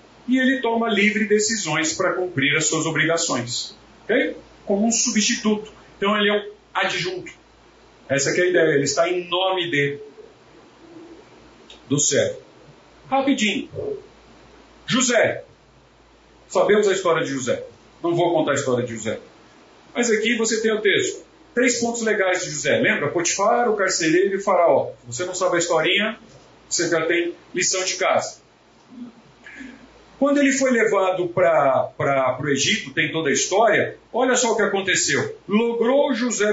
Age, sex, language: 40-59, male, Portuguese